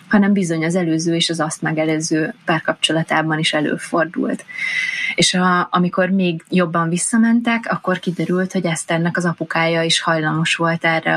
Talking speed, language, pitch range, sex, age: 145 wpm, Hungarian, 165-185 Hz, female, 20-39